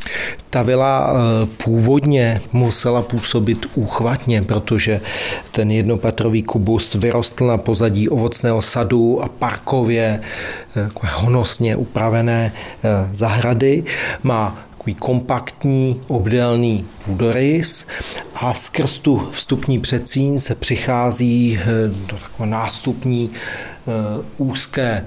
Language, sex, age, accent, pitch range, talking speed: Czech, male, 40-59, native, 110-125 Hz, 85 wpm